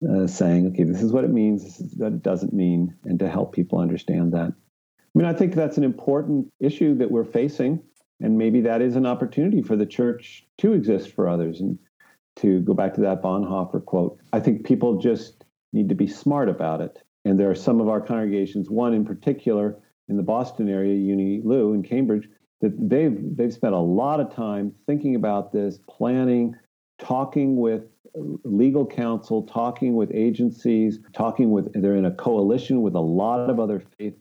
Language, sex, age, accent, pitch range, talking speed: English, male, 50-69, American, 95-120 Hz, 195 wpm